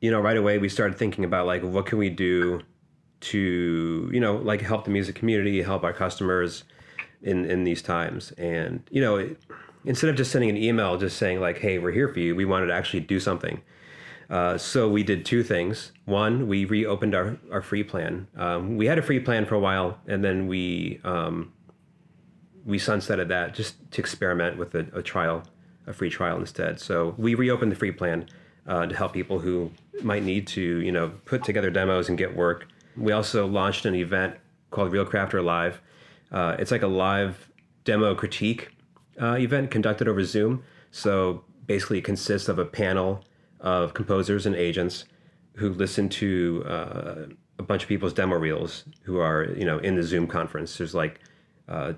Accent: American